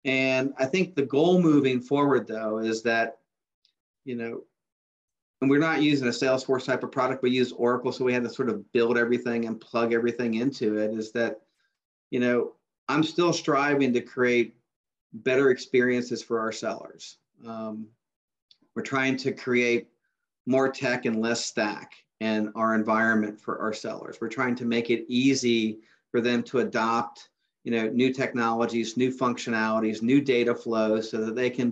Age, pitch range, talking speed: 40-59, 115-130 Hz, 170 wpm